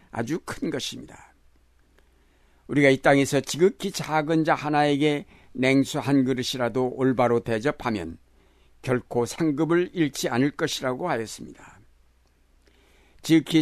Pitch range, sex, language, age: 100-155 Hz, male, Korean, 60-79